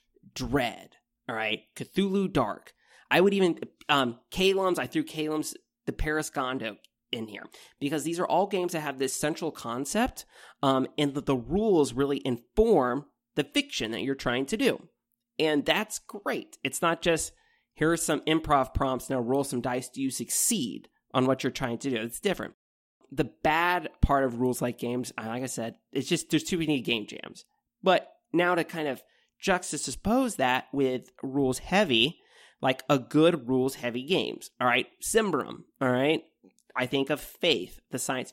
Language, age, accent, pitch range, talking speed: English, 30-49, American, 125-165 Hz, 175 wpm